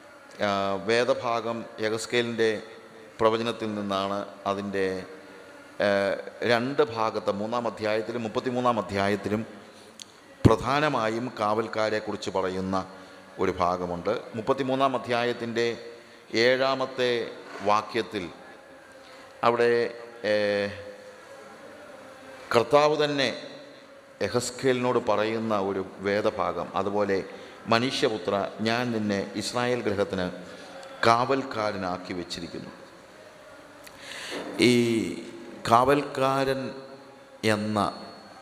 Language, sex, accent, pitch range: English, male, Indian, 105-125 Hz